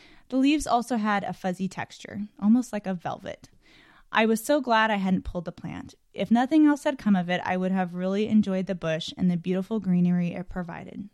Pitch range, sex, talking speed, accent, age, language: 180-215 Hz, female, 215 wpm, American, 20-39, English